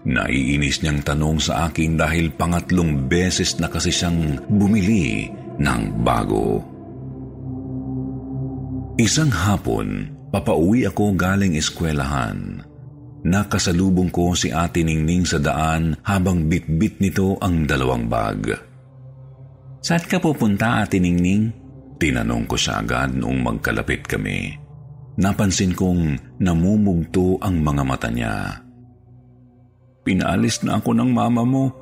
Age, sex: 50-69, male